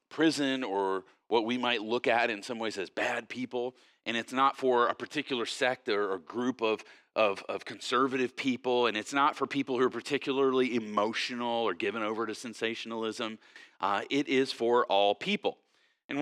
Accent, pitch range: American, 110-135 Hz